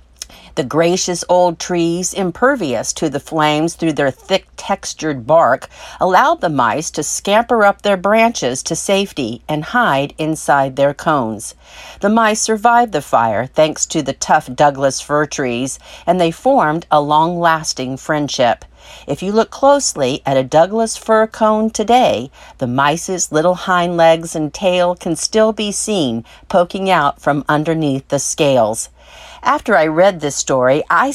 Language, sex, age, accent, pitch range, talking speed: English, female, 50-69, American, 145-195 Hz, 150 wpm